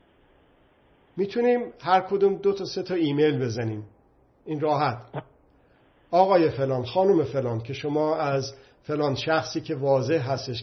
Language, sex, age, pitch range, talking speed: Persian, male, 50-69, 130-170 Hz, 130 wpm